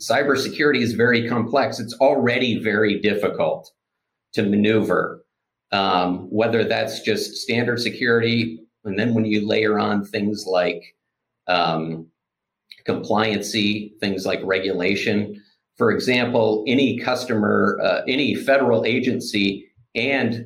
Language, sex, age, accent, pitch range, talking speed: English, male, 50-69, American, 100-120 Hz, 110 wpm